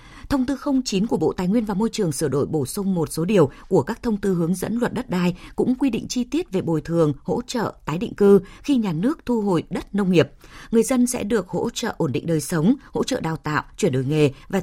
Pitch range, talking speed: 165-230 Hz, 265 wpm